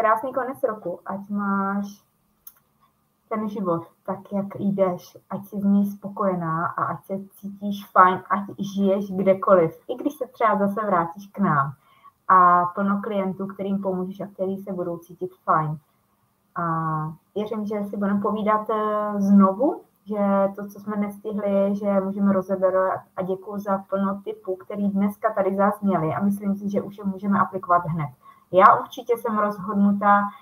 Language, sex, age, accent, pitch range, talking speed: Czech, female, 20-39, native, 185-215 Hz, 160 wpm